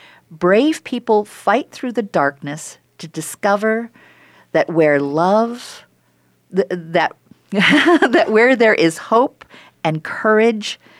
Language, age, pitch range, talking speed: English, 50-69, 145-215 Hz, 105 wpm